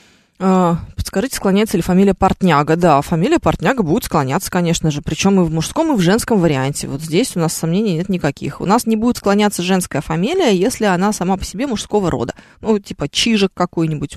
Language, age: Russian, 20-39